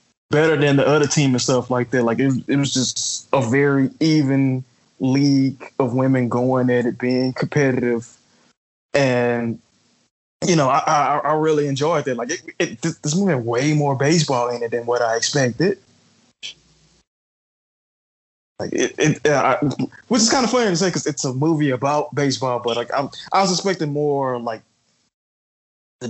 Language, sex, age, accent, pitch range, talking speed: English, male, 20-39, American, 120-145 Hz, 175 wpm